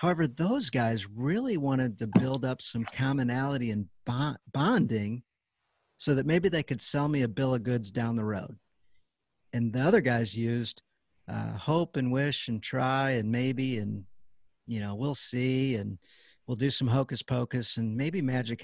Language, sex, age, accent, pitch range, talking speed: English, male, 50-69, American, 105-130 Hz, 175 wpm